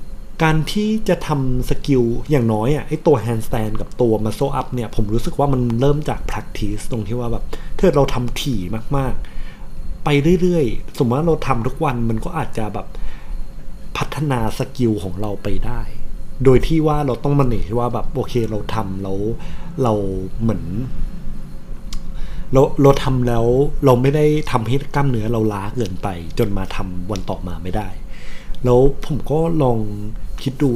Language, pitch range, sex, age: Thai, 105-140 Hz, male, 20-39